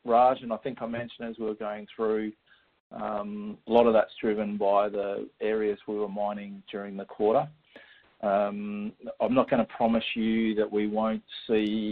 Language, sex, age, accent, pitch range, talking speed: English, male, 40-59, Australian, 100-110 Hz, 185 wpm